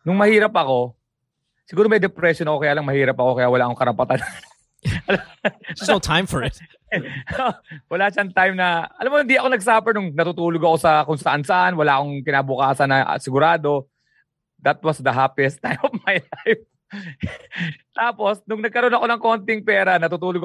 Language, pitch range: English, 130-180 Hz